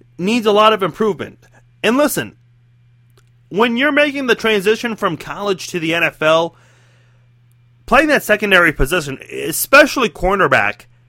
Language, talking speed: English, 125 wpm